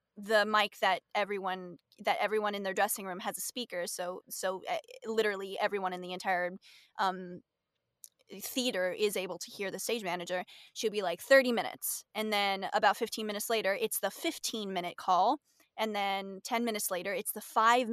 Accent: American